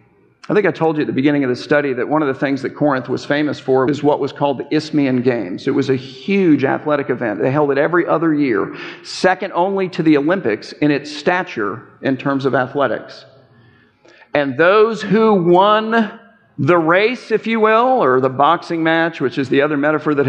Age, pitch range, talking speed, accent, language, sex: 50-69, 145-215 Hz, 210 wpm, American, English, male